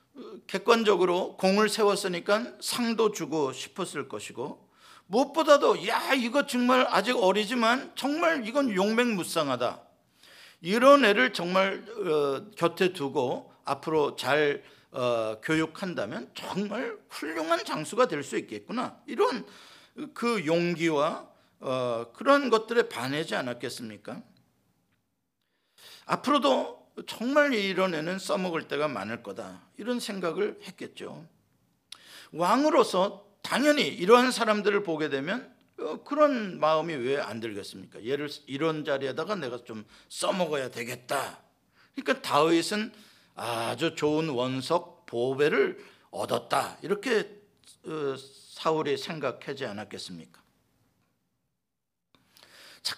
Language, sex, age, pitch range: Korean, male, 50-69, 155-245 Hz